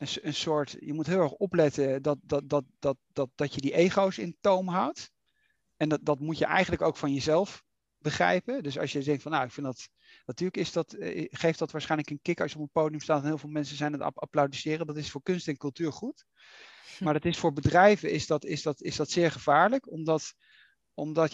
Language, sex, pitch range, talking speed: Dutch, male, 145-180 Hz, 230 wpm